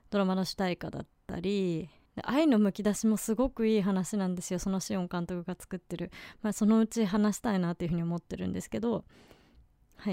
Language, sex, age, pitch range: Japanese, female, 20-39, 180-230 Hz